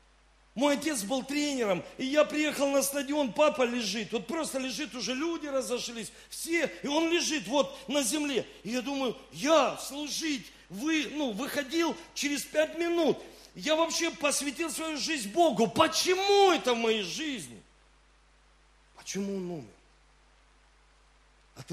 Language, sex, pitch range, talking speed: Russian, male, 210-300 Hz, 140 wpm